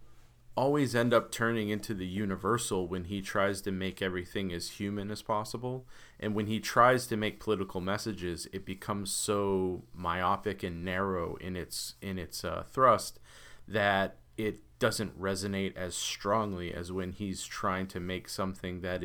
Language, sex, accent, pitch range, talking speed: English, male, American, 90-110 Hz, 160 wpm